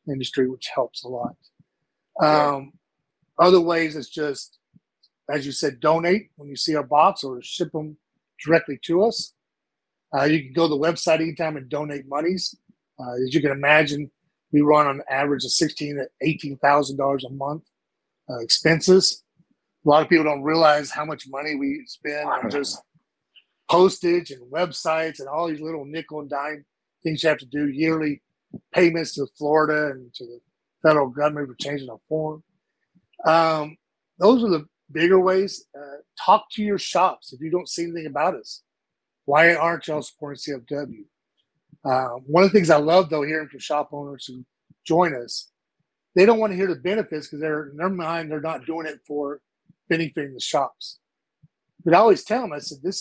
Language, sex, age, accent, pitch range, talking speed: English, male, 40-59, American, 145-170 Hz, 185 wpm